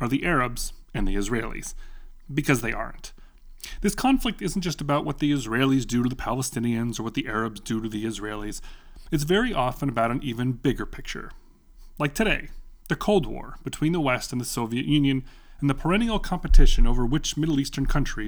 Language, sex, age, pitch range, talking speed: English, male, 30-49, 115-155 Hz, 190 wpm